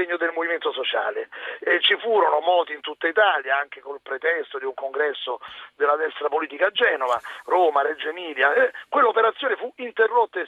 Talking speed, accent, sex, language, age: 160 wpm, native, male, Italian, 40-59